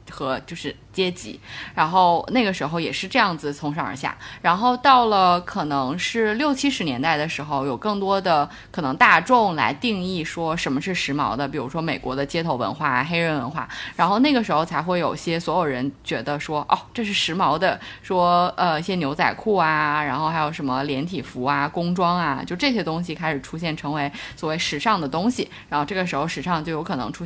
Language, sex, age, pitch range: Chinese, female, 20-39, 155-230 Hz